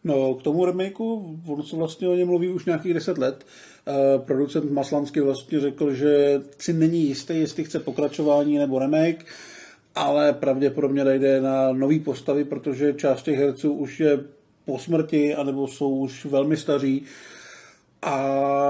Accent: native